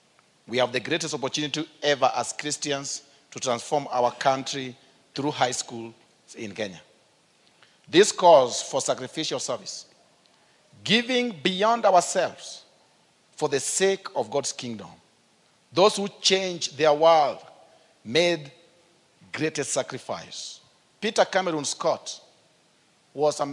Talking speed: 110 wpm